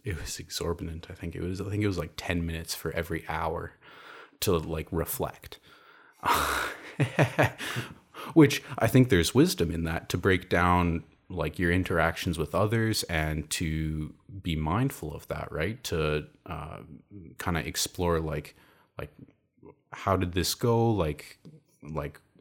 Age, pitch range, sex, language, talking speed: 30-49, 80-95 Hz, male, English, 145 wpm